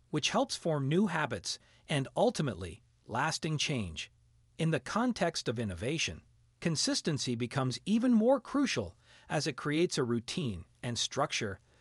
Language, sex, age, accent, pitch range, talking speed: Italian, male, 40-59, American, 120-180 Hz, 130 wpm